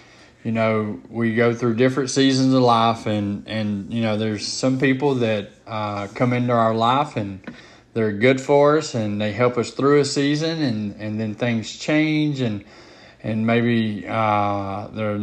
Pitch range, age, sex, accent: 105-125 Hz, 20-39, male, American